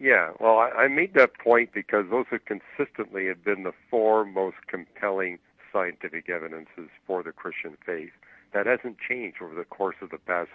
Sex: male